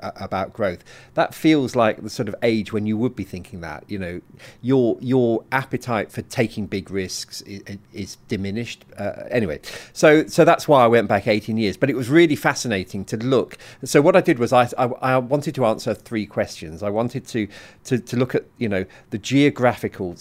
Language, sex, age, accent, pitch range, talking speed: English, male, 40-59, British, 105-135 Hz, 205 wpm